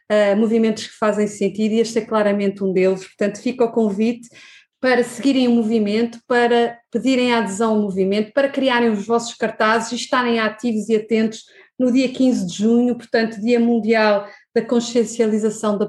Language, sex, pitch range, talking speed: Portuguese, female, 200-235 Hz, 170 wpm